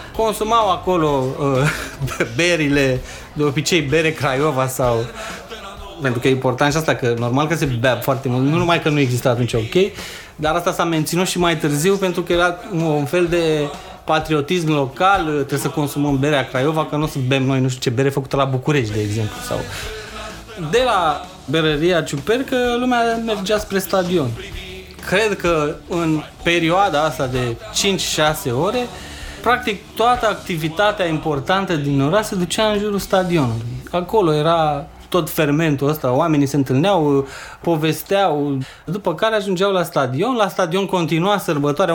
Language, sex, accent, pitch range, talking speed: Romanian, male, native, 140-180 Hz, 155 wpm